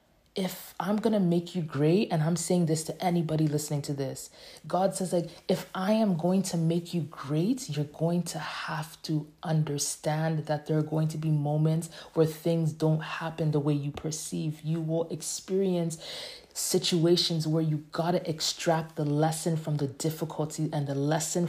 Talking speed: 180 wpm